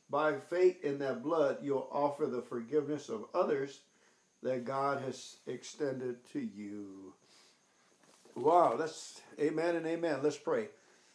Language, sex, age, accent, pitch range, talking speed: English, male, 60-79, American, 145-205 Hz, 130 wpm